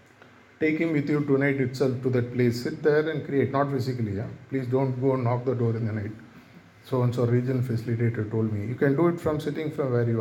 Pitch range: 125-155 Hz